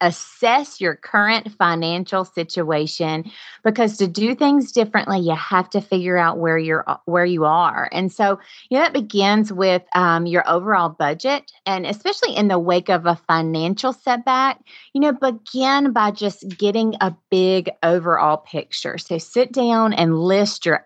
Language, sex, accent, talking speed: English, female, American, 160 wpm